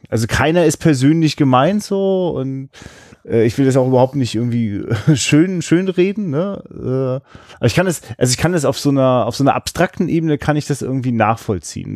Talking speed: 195 wpm